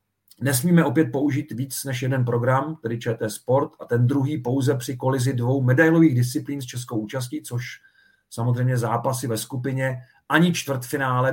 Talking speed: 155 wpm